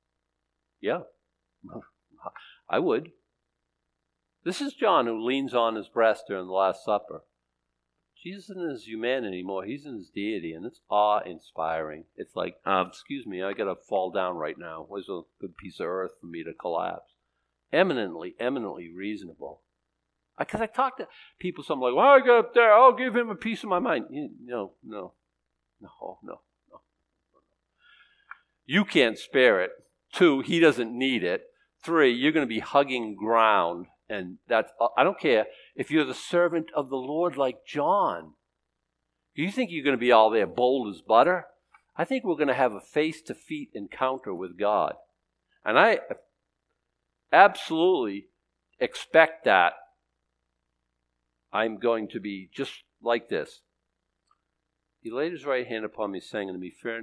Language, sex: English, male